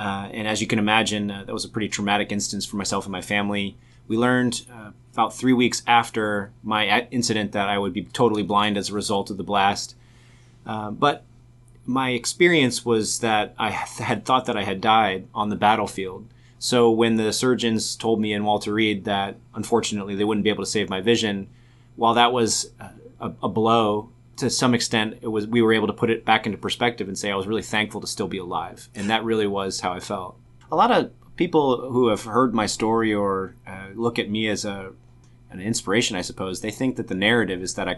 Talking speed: 220 wpm